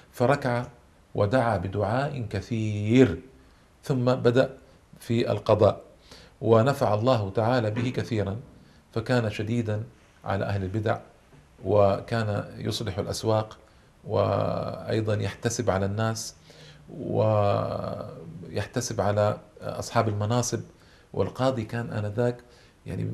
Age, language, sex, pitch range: 40-59, Arabic, male, 105-130 Hz